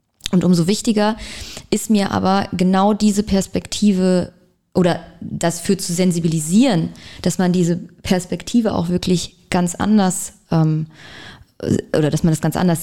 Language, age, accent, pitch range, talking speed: German, 20-39, German, 170-205 Hz, 135 wpm